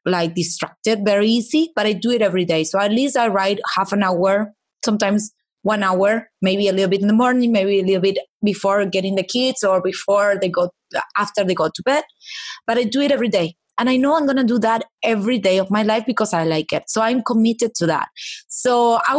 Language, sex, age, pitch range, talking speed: English, female, 20-39, 200-250 Hz, 235 wpm